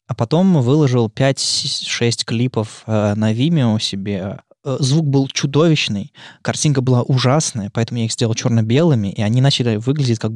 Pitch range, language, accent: 110-135 Hz, Russian, native